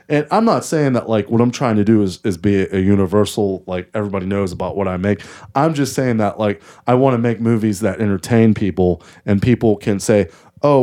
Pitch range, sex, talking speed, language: 100-115 Hz, male, 235 wpm, English